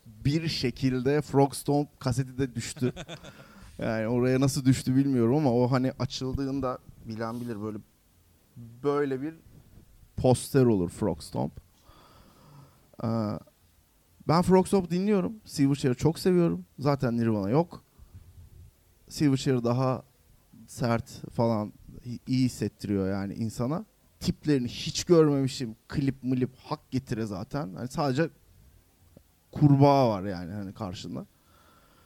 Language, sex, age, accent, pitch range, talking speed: Turkish, male, 30-49, native, 110-160 Hz, 105 wpm